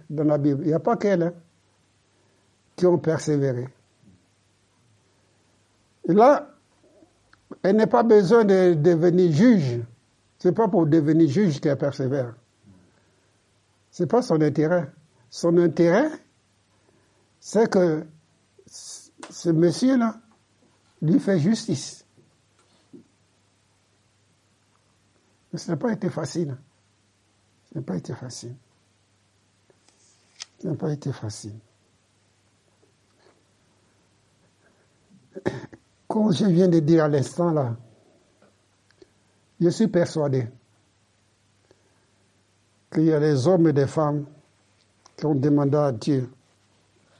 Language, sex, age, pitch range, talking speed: French, male, 60-79, 105-160 Hz, 105 wpm